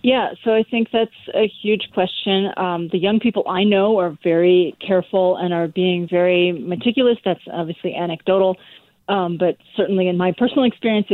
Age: 30-49